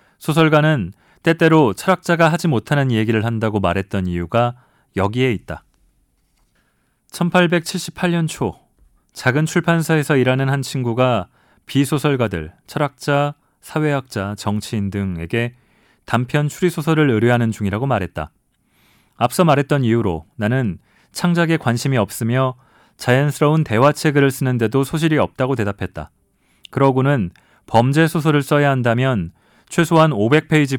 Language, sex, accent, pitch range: Korean, male, native, 110-150 Hz